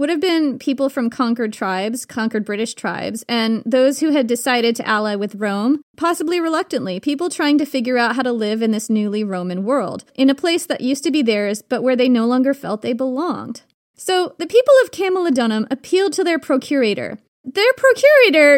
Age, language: 30-49, English